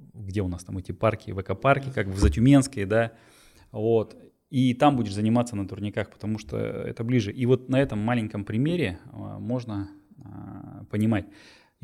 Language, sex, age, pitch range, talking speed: Russian, male, 20-39, 105-130 Hz, 155 wpm